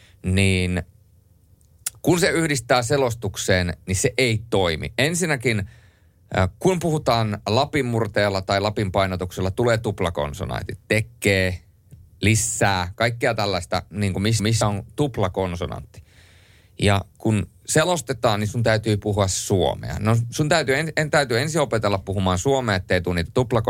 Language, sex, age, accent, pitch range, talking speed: Finnish, male, 30-49, native, 90-115 Hz, 115 wpm